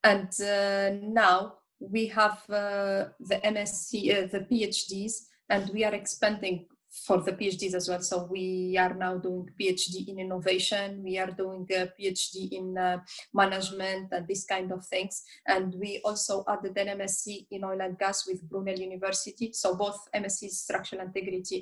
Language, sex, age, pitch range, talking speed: English, female, 20-39, 190-205 Hz, 165 wpm